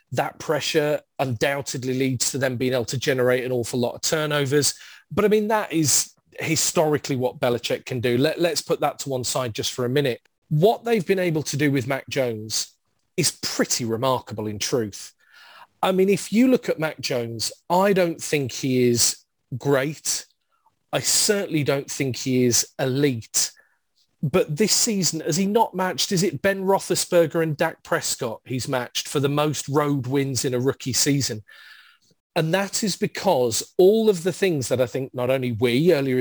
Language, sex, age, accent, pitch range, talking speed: English, male, 30-49, British, 125-165 Hz, 180 wpm